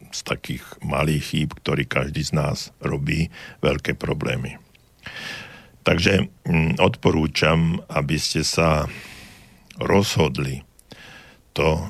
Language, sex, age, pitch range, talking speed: Slovak, male, 60-79, 75-90 Hz, 90 wpm